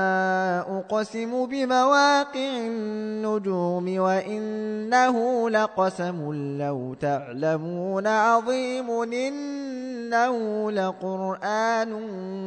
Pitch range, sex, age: 190-245 Hz, male, 20-39